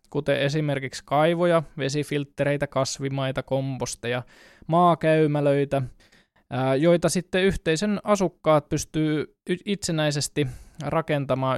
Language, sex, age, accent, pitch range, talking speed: Finnish, male, 20-39, native, 135-165 Hz, 75 wpm